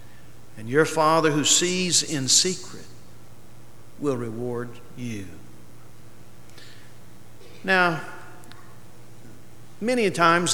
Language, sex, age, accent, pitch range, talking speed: English, male, 50-69, American, 135-195 Hz, 75 wpm